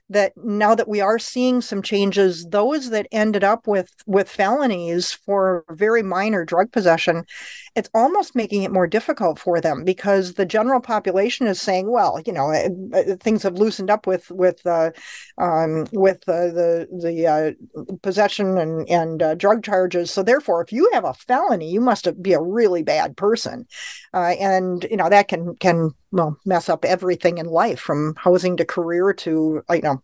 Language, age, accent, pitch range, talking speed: English, 50-69, American, 180-210 Hz, 180 wpm